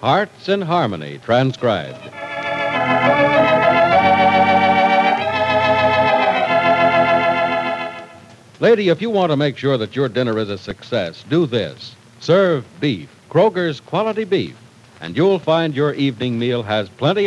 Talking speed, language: 110 wpm, English